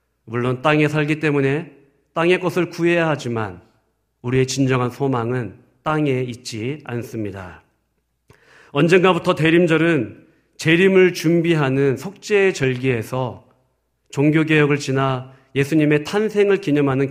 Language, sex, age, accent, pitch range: Korean, male, 40-59, native, 125-170 Hz